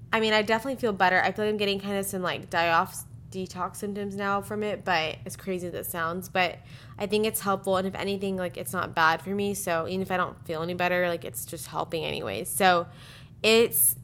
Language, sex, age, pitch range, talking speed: English, female, 20-39, 165-200 Hz, 245 wpm